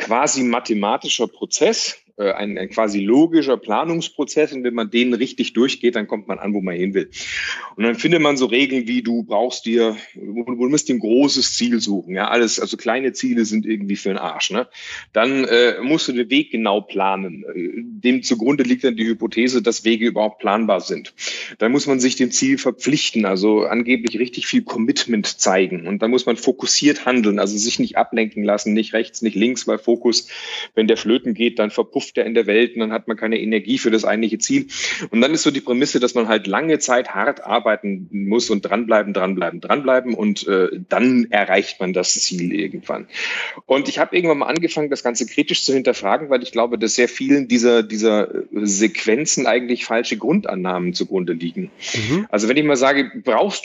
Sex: male